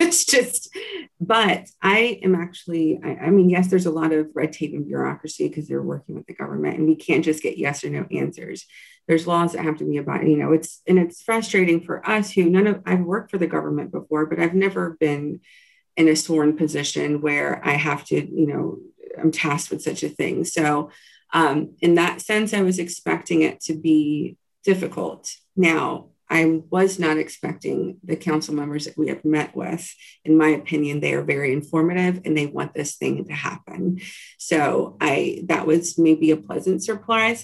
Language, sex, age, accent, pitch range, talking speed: English, female, 40-59, American, 155-185 Hz, 200 wpm